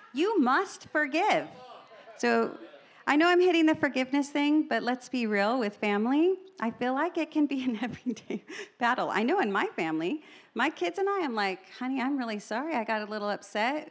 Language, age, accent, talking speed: English, 40-59, American, 200 wpm